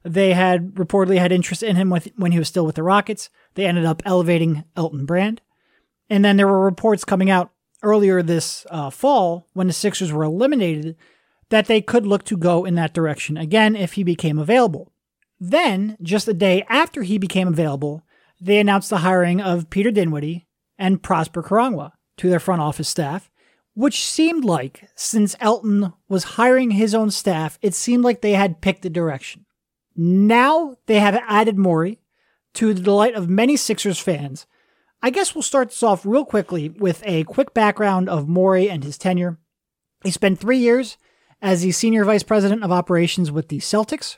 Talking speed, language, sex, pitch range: 180 wpm, English, male, 175-210 Hz